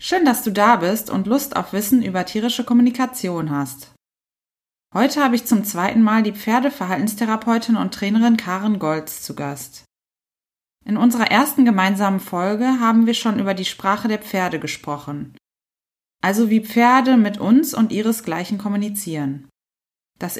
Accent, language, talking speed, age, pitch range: German, German, 145 wpm, 20-39, 190-245 Hz